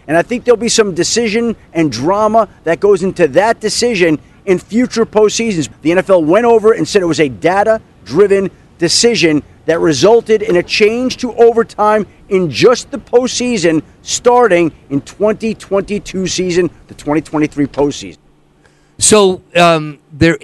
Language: English